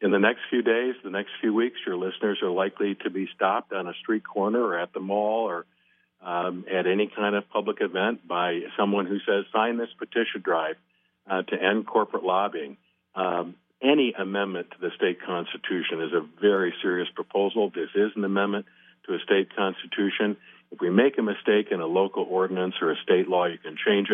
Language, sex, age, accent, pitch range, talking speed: English, male, 50-69, American, 90-105 Hz, 200 wpm